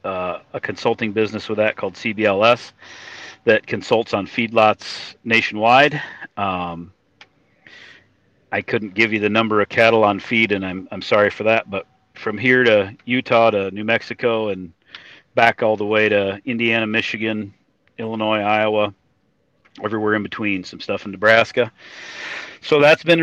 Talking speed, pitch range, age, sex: 150 wpm, 105-120 Hz, 40-59, male